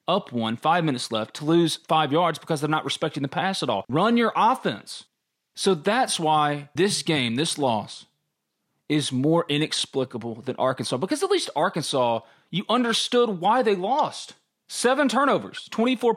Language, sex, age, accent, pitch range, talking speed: English, male, 30-49, American, 140-200 Hz, 165 wpm